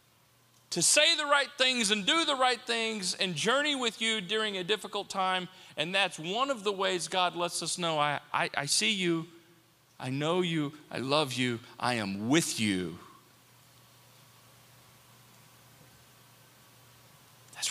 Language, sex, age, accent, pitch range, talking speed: English, male, 40-59, American, 155-220 Hz, 150 wpm